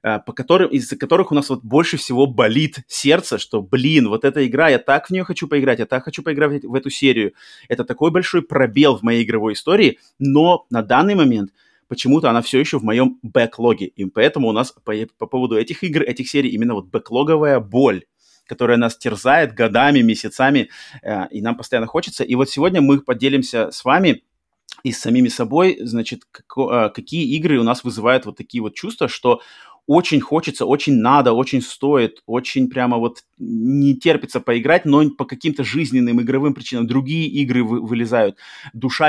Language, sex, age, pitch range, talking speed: Russian, male, 30-49, 120-150 Hz, 180 wpm